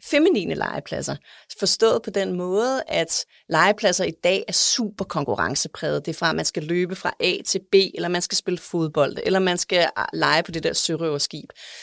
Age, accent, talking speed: 30-49, native, 190 wpm